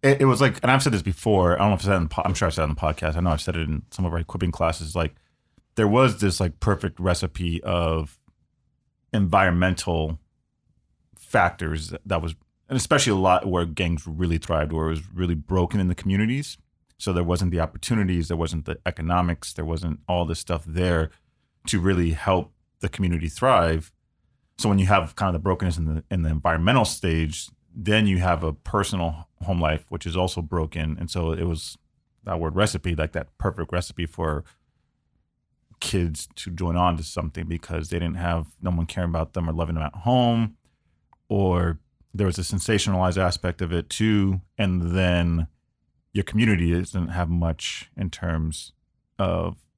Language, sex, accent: English, male, American